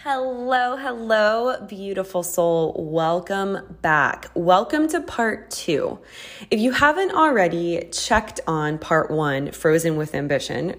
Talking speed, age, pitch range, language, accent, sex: 115 wpm, 20-39, 160-215 Hz, English, American, female